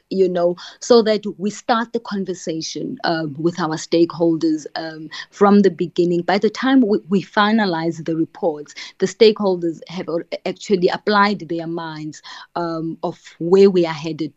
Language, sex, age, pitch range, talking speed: English, female, 20-39, 170-205 Hz, 155 wpm